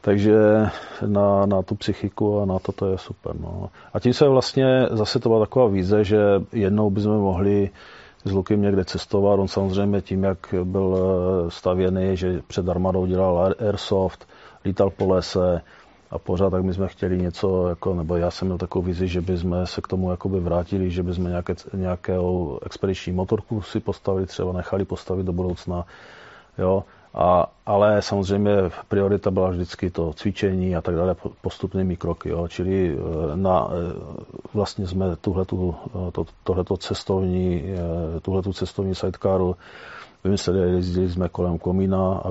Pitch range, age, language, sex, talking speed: 90-100 Hz, 40-59, Czech, male, 150 wpm